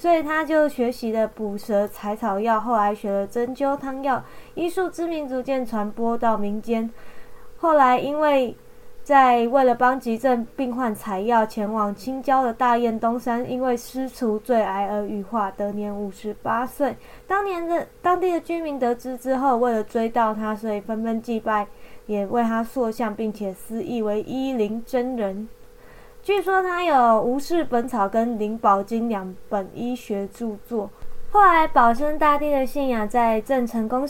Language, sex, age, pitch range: Chinese, female, 20-39, 215-265 Hz